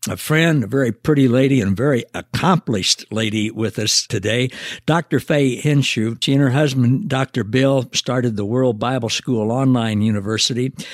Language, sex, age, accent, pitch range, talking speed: English, male, 60-79, American, 110-145 Hz, 160 wpm